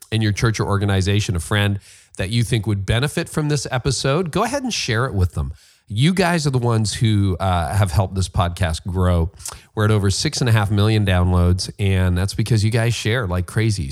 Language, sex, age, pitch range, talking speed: English, male, 40-59, 95-120 Hz, 220 wpm